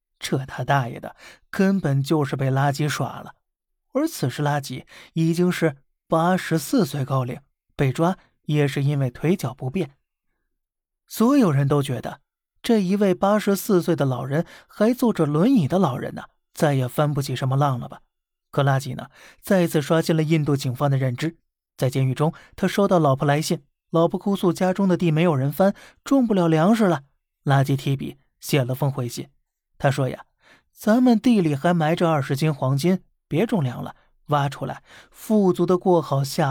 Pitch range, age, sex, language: 140-180 Hz, 20-39, male, Chinese